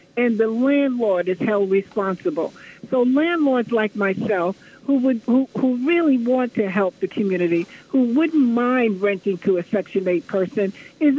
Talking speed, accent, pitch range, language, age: 160 wpm, American, 200-260 Hz, English, 60-79